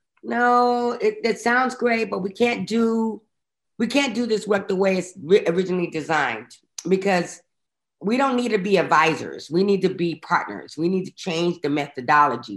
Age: 30-49